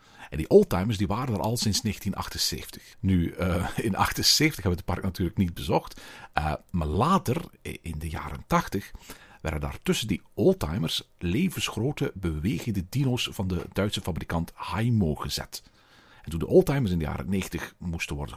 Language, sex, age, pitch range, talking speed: Dutch, male, 50-69, 95-130 Hz, 165 wpm